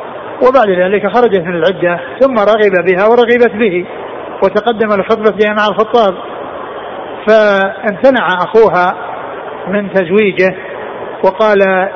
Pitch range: 195-230 Hz